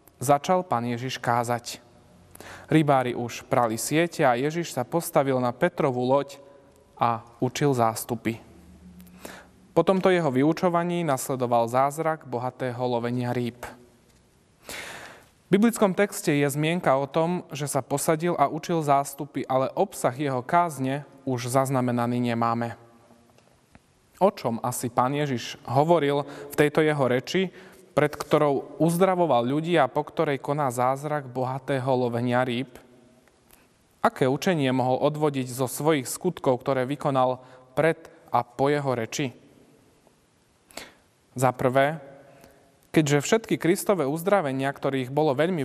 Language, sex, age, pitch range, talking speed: Slovak, male, 30-49, 125-150 Hz, 120 wpm